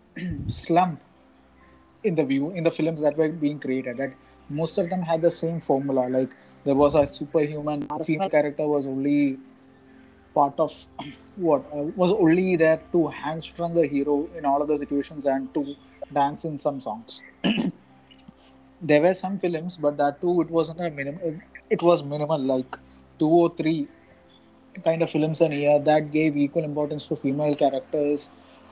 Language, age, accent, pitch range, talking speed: Malayalam, 20-39, native, 135-160 Hz, 170 wpm